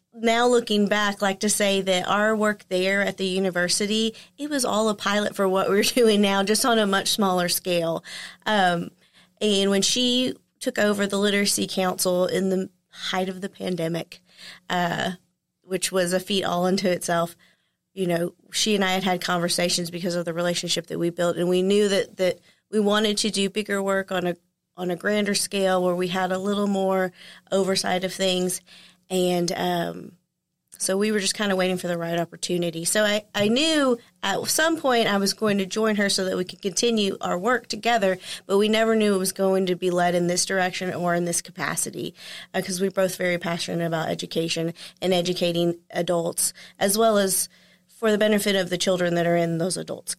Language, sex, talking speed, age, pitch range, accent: English, female, 205 wpm, 30-49, 175-205 Hz, American